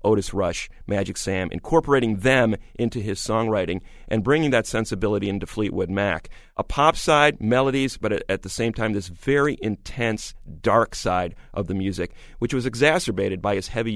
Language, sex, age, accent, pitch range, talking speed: English, male, 40-59, American, 95-125 Hz, 170 wpm